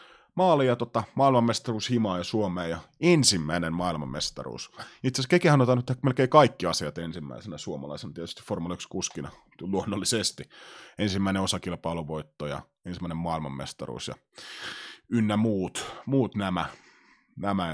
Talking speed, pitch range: 110 wpm, 85-120 Hz